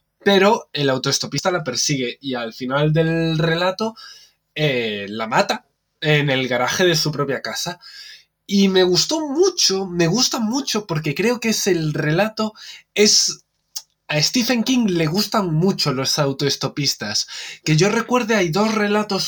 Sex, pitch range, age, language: male, 155-210 Hz, 20-39, Spanish